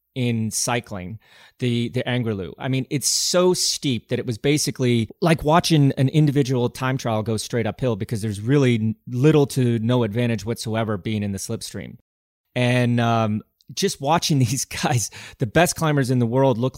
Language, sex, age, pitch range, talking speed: English, male, 30-49, 110-140 Hz, 170 wpm